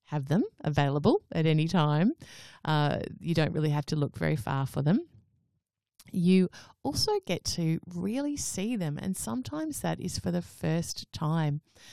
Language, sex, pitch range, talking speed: English, female, 150-190 Hz, 160 wpm